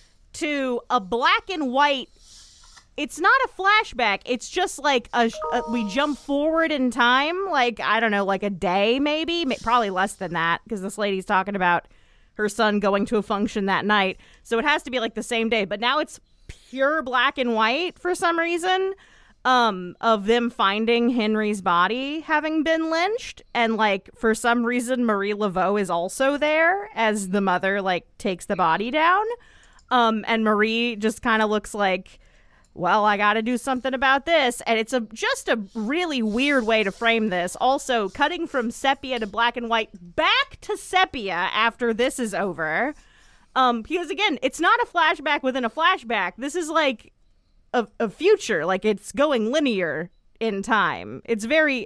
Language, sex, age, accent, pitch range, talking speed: English, female, 30-49, American, 210-290 Hz, 180 wpm